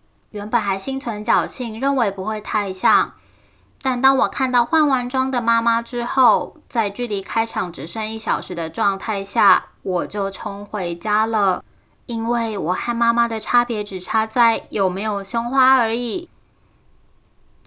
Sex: female